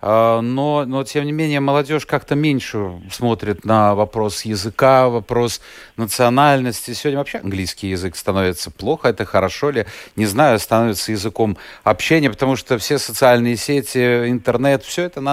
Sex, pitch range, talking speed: male, 110-150 Hz, 145 wpm